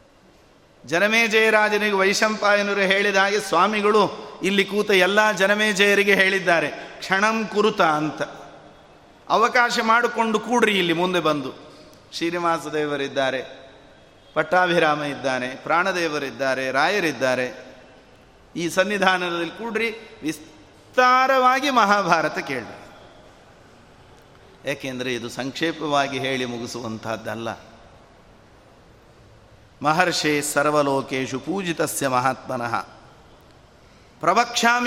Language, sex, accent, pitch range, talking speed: Kannada, male, native, 135-210 Hz, 70 wpm